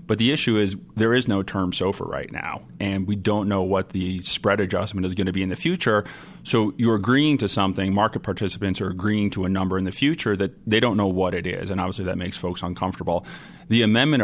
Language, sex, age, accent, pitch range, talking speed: English, male, 30-49, American, 95-105 Hz, 235 wpm